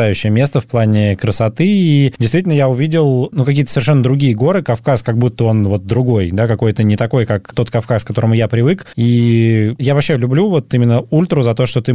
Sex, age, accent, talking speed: male, 20-39, native, 205 wpm